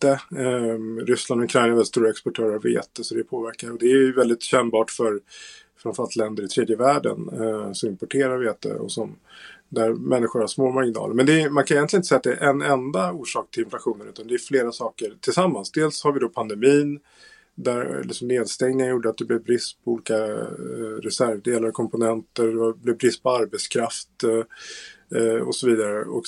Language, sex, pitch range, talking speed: Swedish, male, 115-155 Hz, 205 wpm